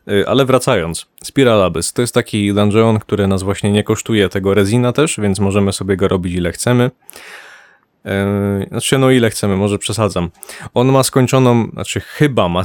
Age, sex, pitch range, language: 20-39, male, 100-125 Hz, Polish